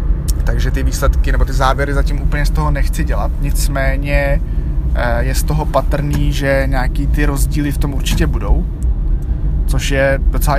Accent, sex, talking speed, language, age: native, male, 160 wpm, Czech, 20-39